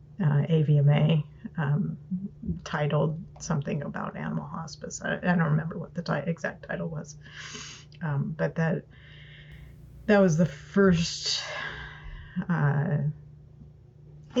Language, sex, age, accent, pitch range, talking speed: English, female, 30-49, American, 145-185 Hz, 110 wpm